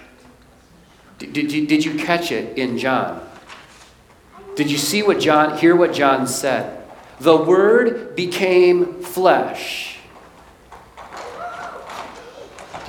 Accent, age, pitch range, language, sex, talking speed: American, 40-59, 185-280 Hz, English, male, 100 wpm